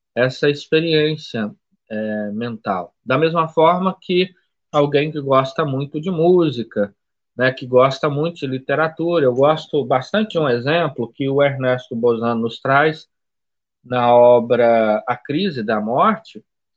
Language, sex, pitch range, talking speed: Portuguese, male, 125-180 Hz, 135 wpm